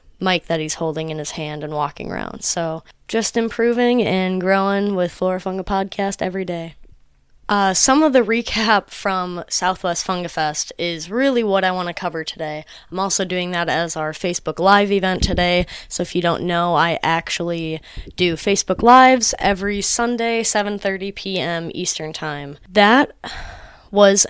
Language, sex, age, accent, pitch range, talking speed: English, female, 20-39, American, 170-200 Hz, 165 wpm